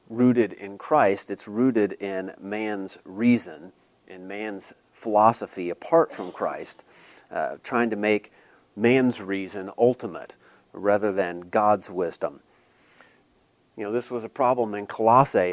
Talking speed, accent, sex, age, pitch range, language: 130 wpm, American, male, 40-59, 100-120 Hz, English